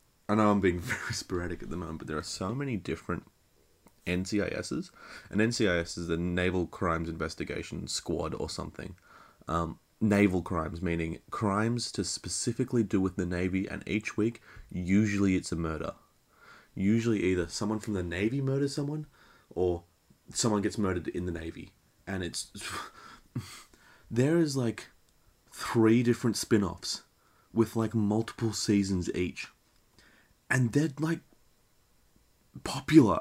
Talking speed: 135 wpm